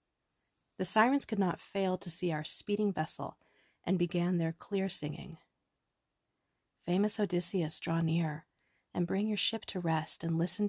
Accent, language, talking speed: American, English, 150 wpm